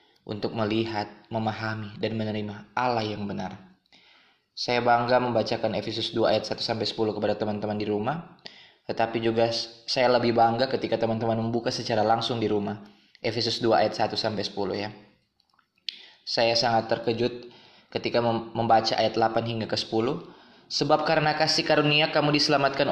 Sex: male